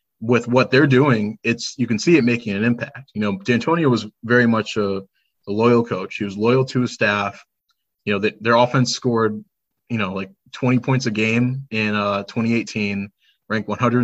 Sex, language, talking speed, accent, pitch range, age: male, English, 190 wpm, American, 105-120 Hz, 20-39